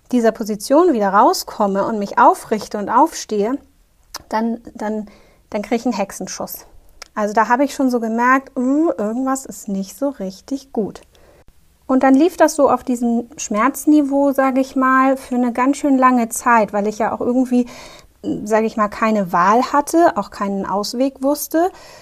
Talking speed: 165 wpm